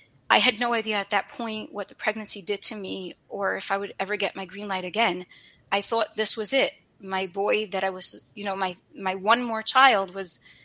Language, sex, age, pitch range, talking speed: English, female, 30-49, 185-220 Hz, 230 wpm